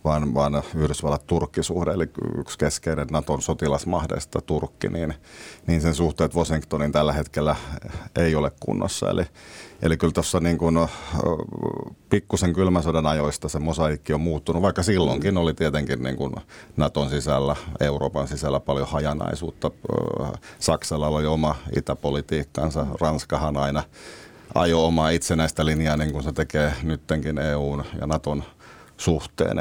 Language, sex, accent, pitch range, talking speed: Finnish, male, native, 75-80 Hz, 125 wpm